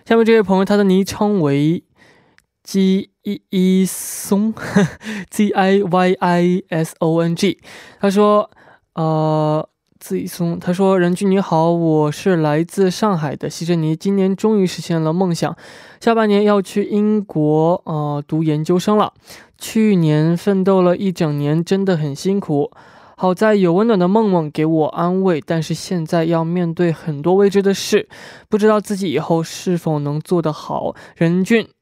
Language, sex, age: Korean, male, 20-39